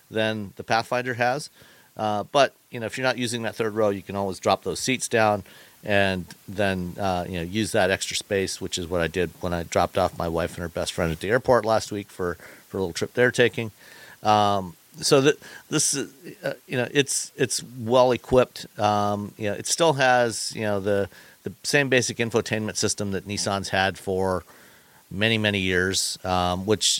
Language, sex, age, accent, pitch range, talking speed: English, male, 50-69, American, 95-115 Hz, 205 wpm